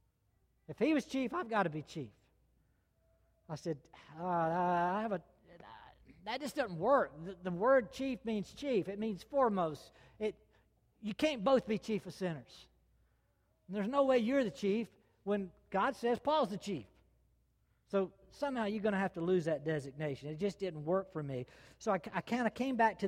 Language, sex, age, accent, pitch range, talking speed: English, male, 60-79, American, 155-205 Hz, 175 wpm